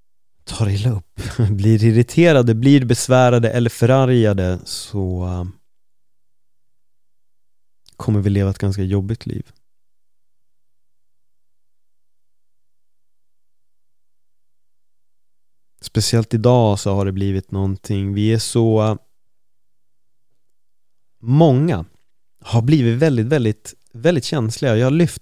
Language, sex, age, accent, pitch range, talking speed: Swedish, male, 30-49, native, 100-120 Hz, 85 wpm